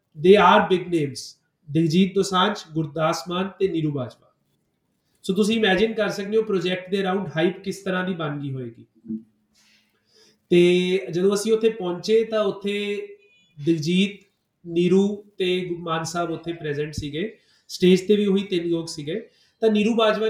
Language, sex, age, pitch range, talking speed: Punjabi, male, 30-49, 175-210 Hz, 155 wpm